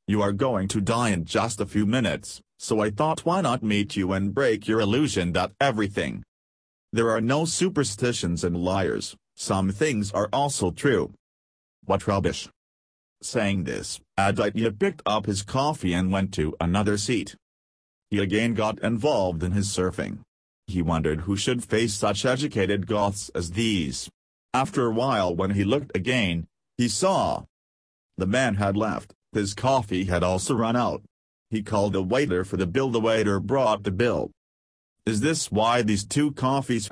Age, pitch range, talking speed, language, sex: 40-59, 90-115 Hz, 165 wpm, Hindi, male